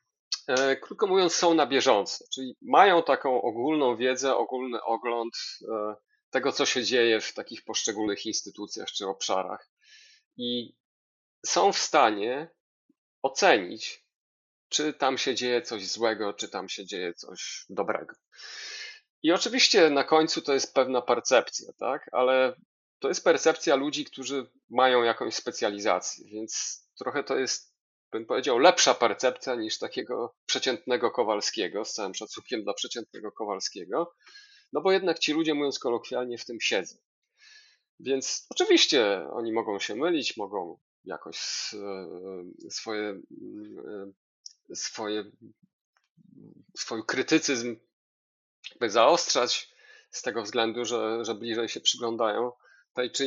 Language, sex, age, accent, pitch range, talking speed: Polish, male, 30-49, native, 115-175 Hz, 125 wpm